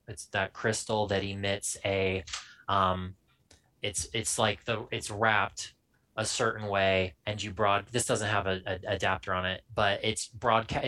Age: 20-39